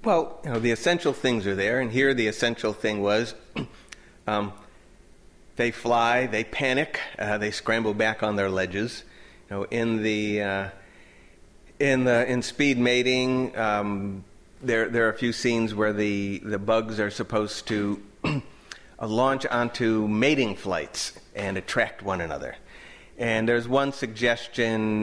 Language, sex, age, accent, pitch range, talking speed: English, male, 40-59, American, 105-130 Hz, 150 wpm